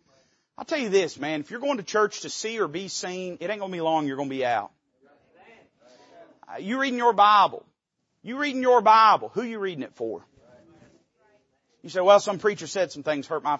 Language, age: English, 40-59